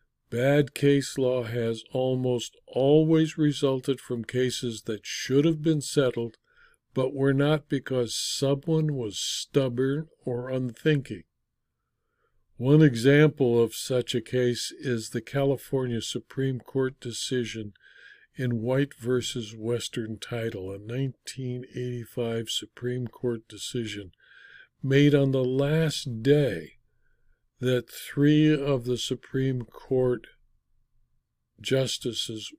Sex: male